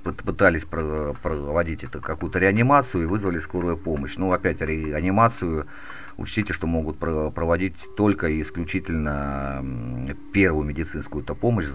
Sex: male